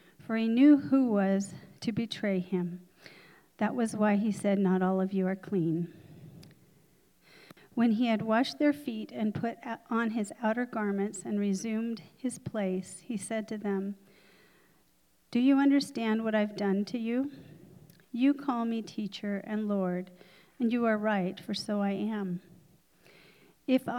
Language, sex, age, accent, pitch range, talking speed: English, female, 40-59, American, 190-230 Hz, 155 wpm